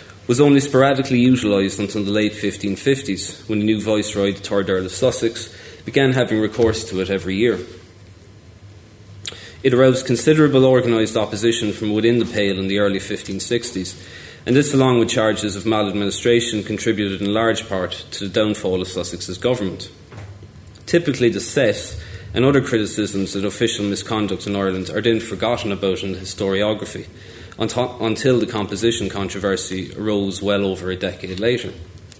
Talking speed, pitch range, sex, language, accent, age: 155 wpm, 95-115 Hz, male, English, Irish, 30-49